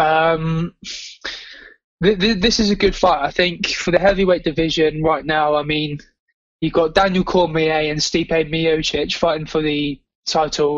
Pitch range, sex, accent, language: 160-185 Hz, male, British, English